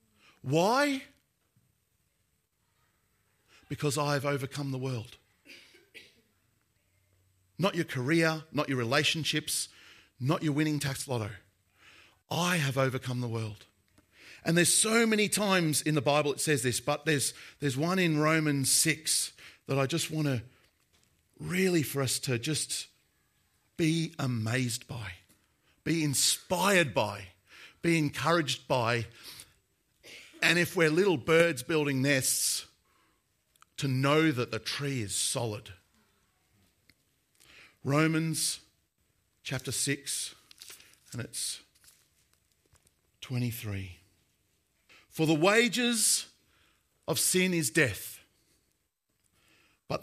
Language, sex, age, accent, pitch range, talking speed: English, male, 40-59, Australian, 110-160 Hz, 105 wpm